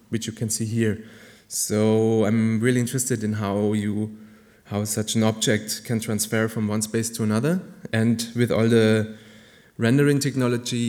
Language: German